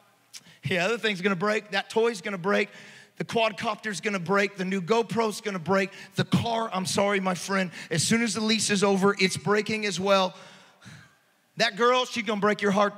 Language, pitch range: English, 190-235 Hz